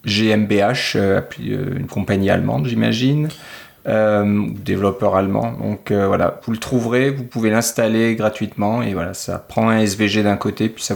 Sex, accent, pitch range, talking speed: male, French, 100-120 Hz, 150 wpm